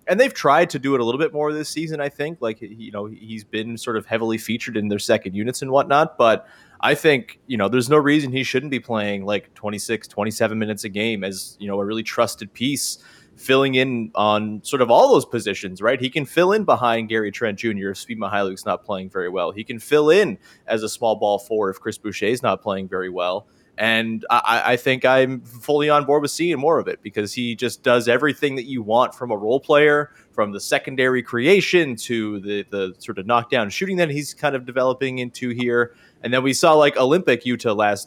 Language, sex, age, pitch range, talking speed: English, male, 20-39, 110-145 Hz, 230 wpm